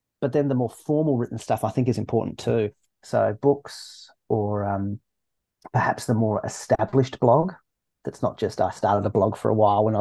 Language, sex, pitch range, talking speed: English, male, 105-125 Hz, 190 wpm